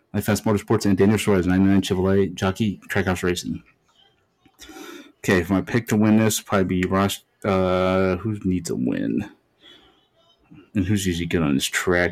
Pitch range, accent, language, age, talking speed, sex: 95-105 Hz, American, English, 30-49, 160 wpm, male